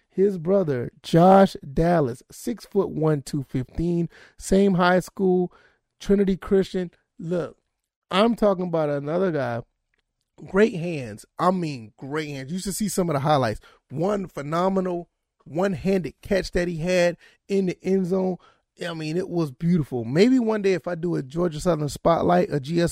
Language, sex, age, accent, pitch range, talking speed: English, male, 30-49, American, 160-195 Hz, 150 wpm